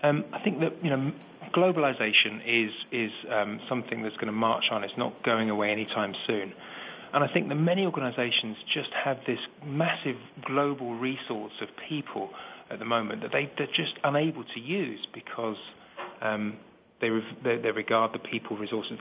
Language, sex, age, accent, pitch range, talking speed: English, male, 40-59, British, 115-145 Hz, 175 wpm